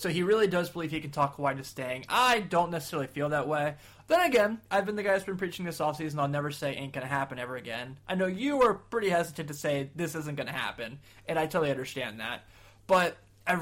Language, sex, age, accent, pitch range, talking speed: English, male, 20-39, American, 130-175 Hz, 255 wpm